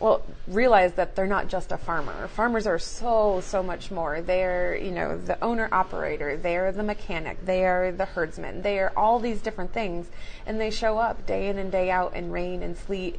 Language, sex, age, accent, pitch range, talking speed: English, female, 30-49, American, 180-205 Hz, 205 wpm